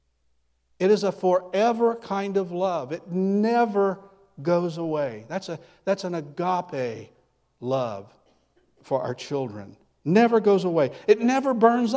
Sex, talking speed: male, 125 wpm